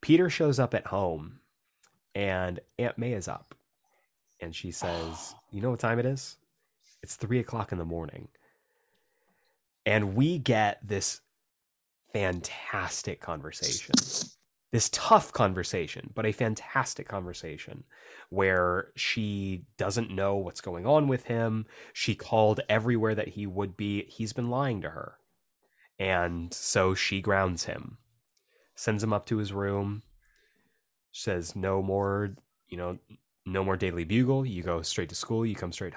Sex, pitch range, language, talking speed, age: male, 90-115 Hz, English, 145 wpm, 30-49